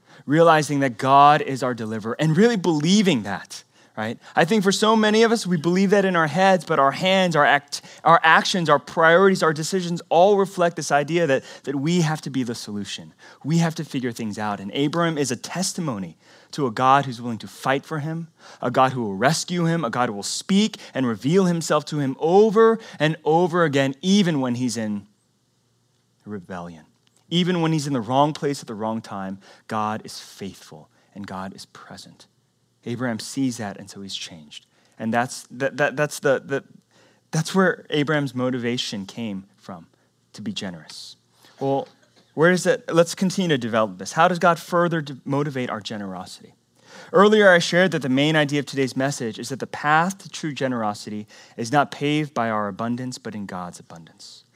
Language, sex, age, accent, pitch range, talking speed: English, male, 20-39, American, 115-170 Hz, 190 wpm